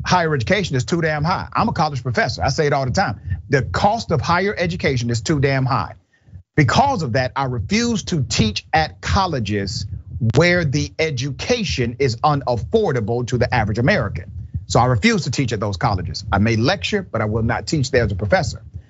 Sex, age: male, 40-59